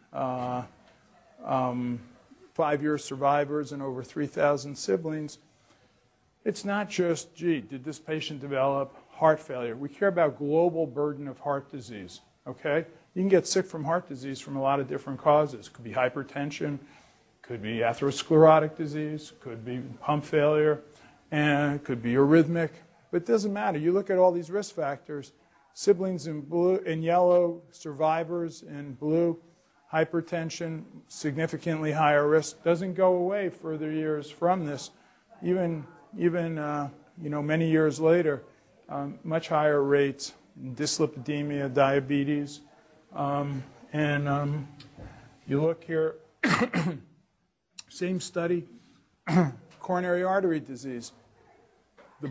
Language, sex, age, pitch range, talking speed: English, male, 40-59, 140-170 Hz, 130 wpm